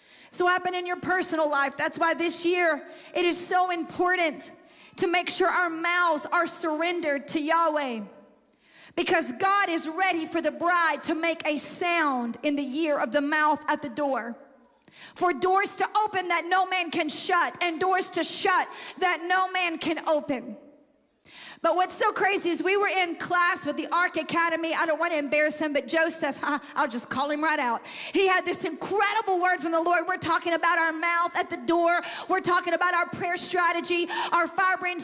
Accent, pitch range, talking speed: American, 315-360 Hz, 190 wpm